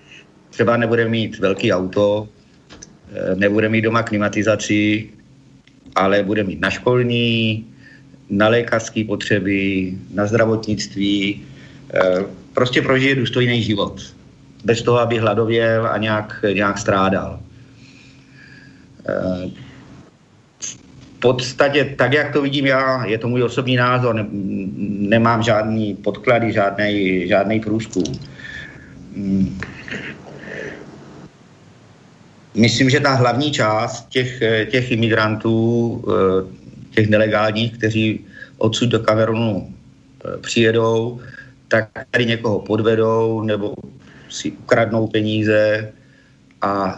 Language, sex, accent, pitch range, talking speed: Czech, male, native, 100-115 Hz, 90 wpm